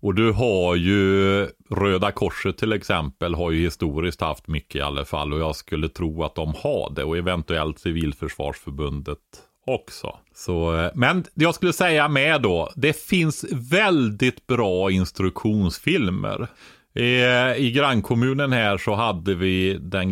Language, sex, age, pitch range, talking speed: Swedish, male, 30-49, 85-110 Hz, 145 wpm